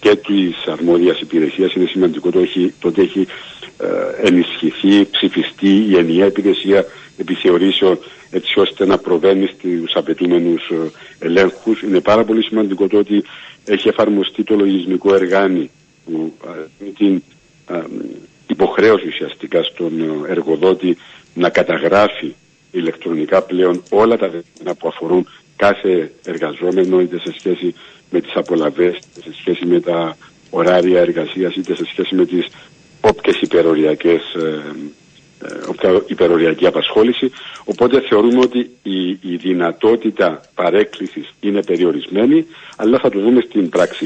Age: 60-79